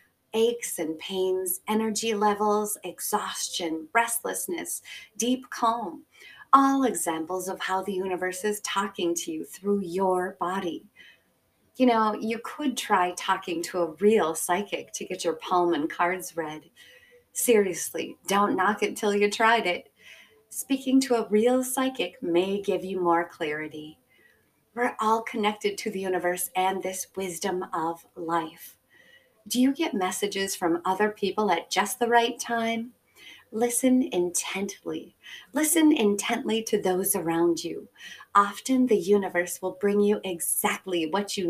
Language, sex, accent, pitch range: English, female, American, 175-225 Hz